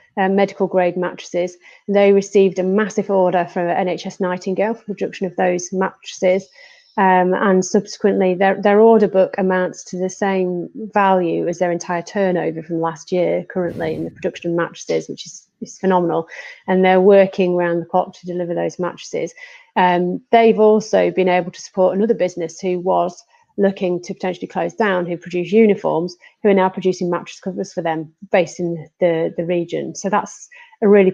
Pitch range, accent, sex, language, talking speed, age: 180-205 Hz, British, female, English, 175 wpm, 30-49